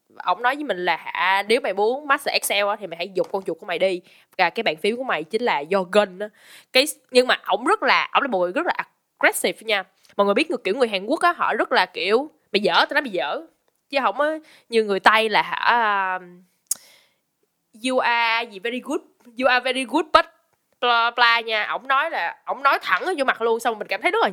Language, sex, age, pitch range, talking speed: Vietnamese, female, 10-29, 195-290 Hz, 235 wpm